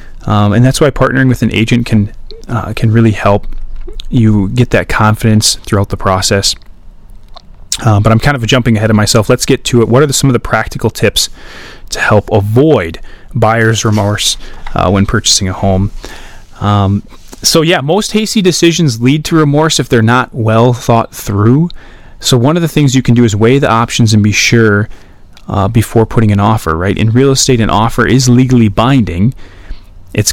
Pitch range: 105-130 Hz